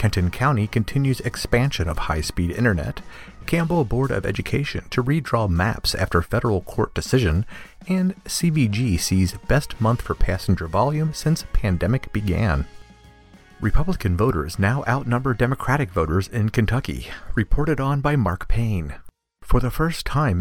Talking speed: 135 wpm